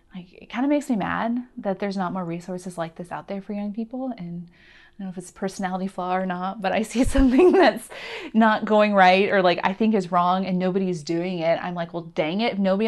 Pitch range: 175-215 Hz